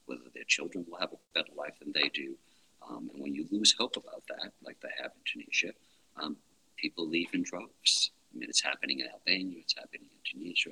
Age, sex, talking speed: 50-69, male, 220 wpm